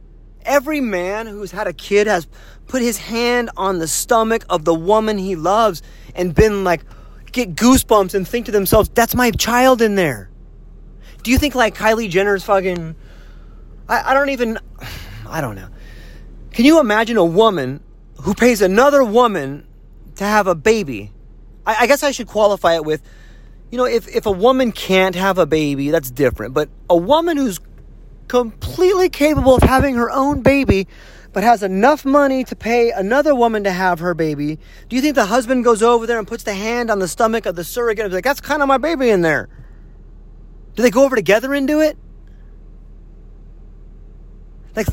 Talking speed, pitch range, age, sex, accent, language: 185 wpm, 170-245 Hz, 30-49, male, American, English